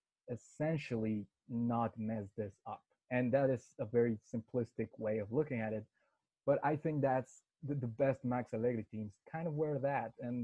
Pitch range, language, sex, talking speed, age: 110-130 Hz, English, male, 180 wpm, 20-39